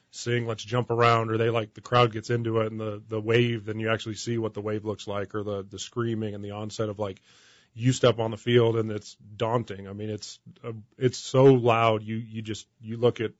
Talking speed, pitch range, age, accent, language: 245 wpm, 105-115 Hz, 30-49, American, English